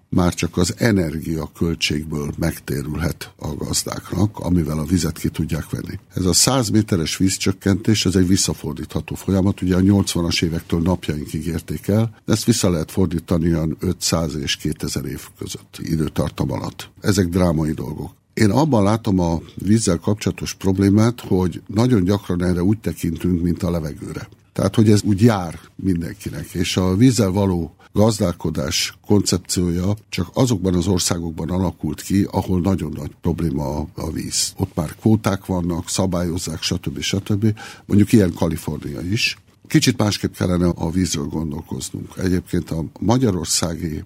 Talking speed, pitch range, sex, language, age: 145 wpm, 85-100 Hz, male, Hungarian, 60-79